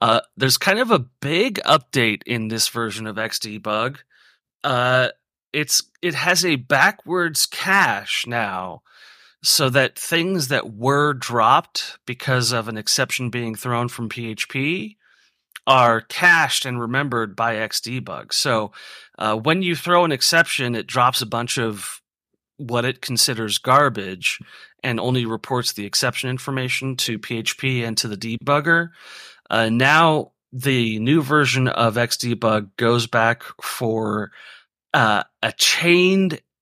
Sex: male